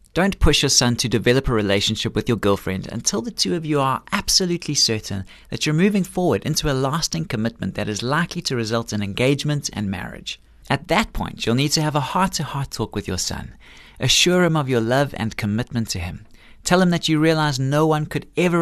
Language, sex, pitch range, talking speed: English, male, 110-165 Hz, 215 wpm